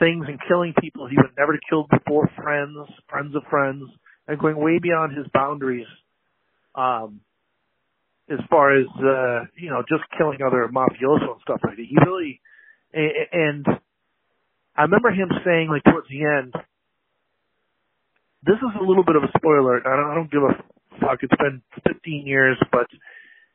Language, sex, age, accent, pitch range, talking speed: English, male, 50-69, American, 135-170 Hz, 160 wpm